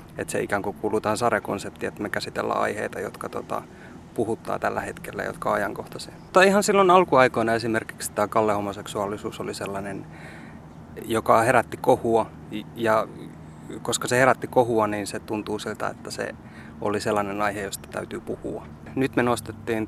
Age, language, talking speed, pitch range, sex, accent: 30-49, Finnish, 150 wpm, 100-115 Hz, male, native